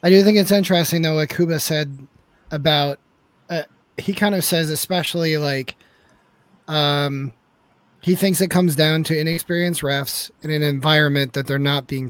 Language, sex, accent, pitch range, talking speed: English, male, American, 145-175 Hz, 165 wpm